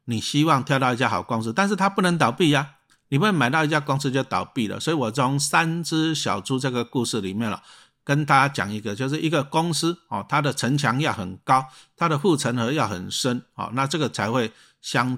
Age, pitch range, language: 50-69, 110-150 Hz, Chinese